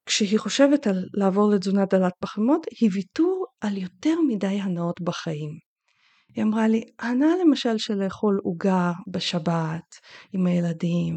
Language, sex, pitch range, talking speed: Hebrew, female, 190-285 Hz, 135 wpm